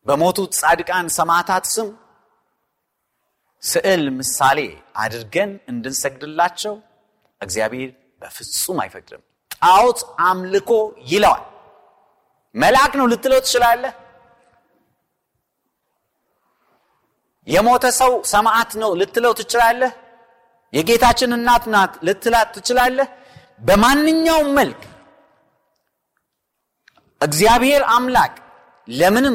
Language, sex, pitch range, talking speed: Amharic, male, 175-245 Hz, 70 wpm